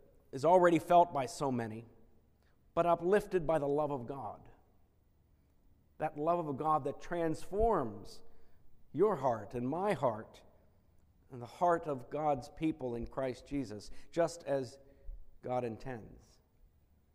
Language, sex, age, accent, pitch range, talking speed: English, male, 50-69, American, 115-170 Hz, 130 wpm